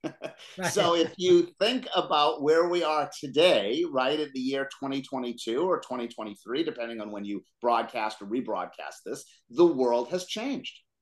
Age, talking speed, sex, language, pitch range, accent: 50-69, 150 wpm, male, English, 130-170 Hz, American